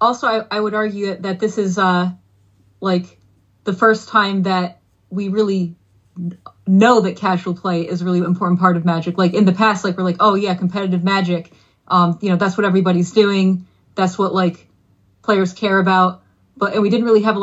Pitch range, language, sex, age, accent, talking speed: 175-205 Hz, English, female, 30-49, American, 195 wpm